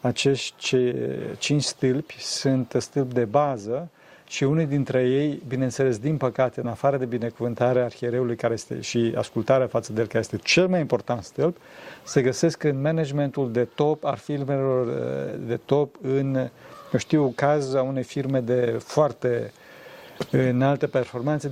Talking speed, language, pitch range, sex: 140 wpm, Romanian, 125-140 Hz, male